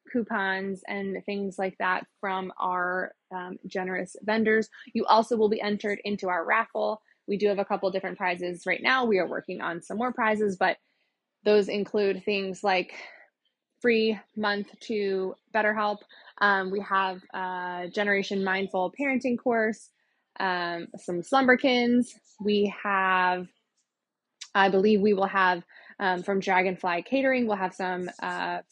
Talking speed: 140 wpm